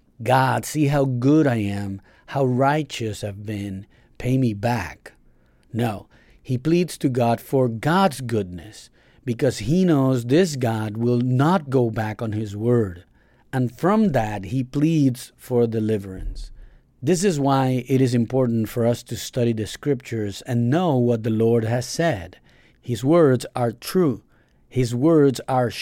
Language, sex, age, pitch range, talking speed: English, male, 50-69, 110-145 Hz, 155 wpm